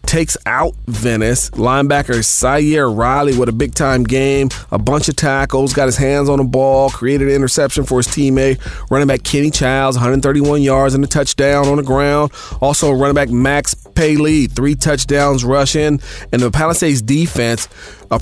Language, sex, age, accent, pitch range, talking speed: English, male, 40-59, American, 130-150 Hz, 170 wpm